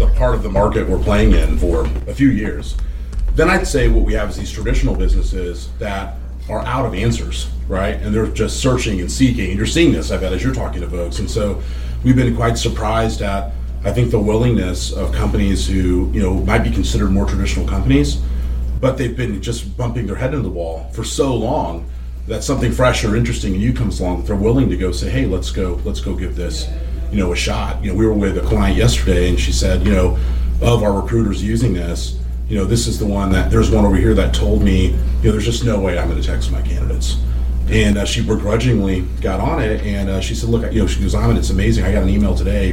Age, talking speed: 40-59, 245 wpm